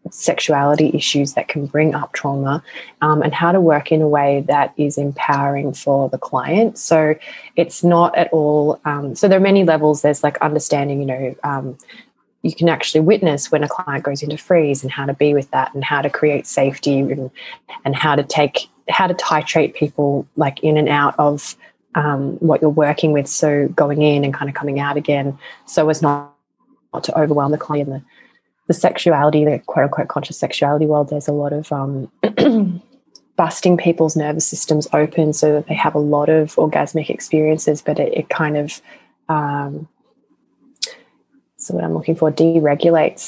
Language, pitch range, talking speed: English, 145-160 Hz, 185 wpm